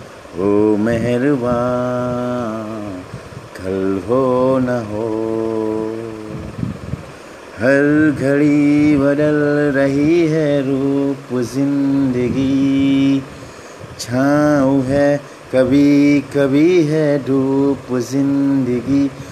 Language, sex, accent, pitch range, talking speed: Hindi, male, native, 115-140 Hz, 55 wpm